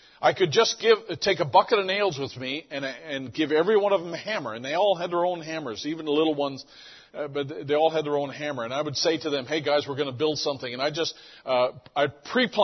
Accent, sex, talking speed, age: American, male, 275 wpm, 50-69